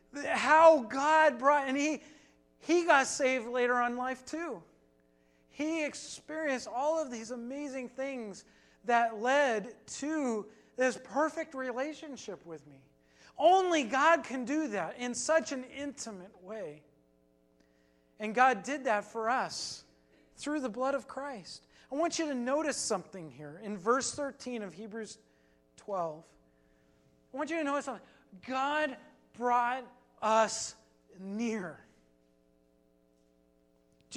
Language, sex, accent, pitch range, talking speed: English, male, American, 185-270 Hz, 130 wpm